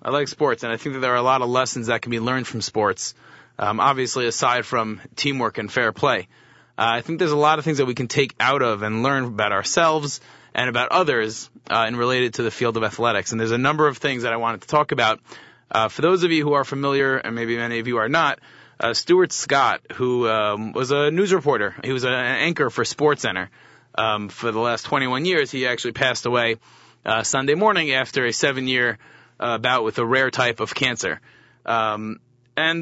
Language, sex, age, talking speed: English, male, 30-49, 225 wpm